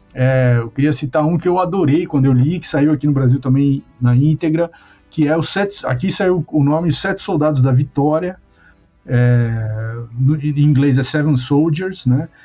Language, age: Portuguese, 50-69